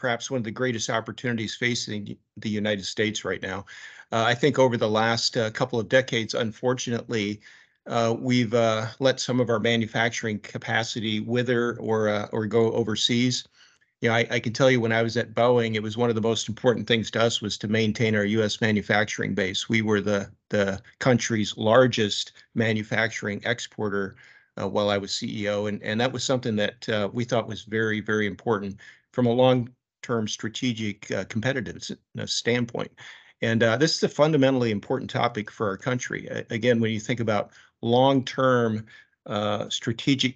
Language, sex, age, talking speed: English, male, 50-69, 185 wpm